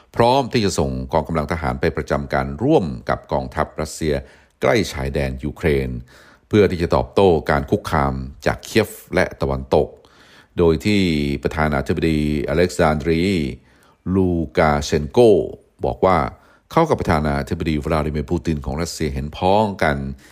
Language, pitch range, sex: Thai, 70-85 Hz, male